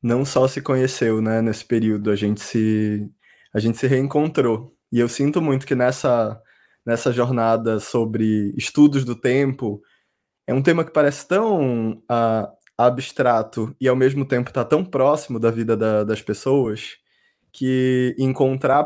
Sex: male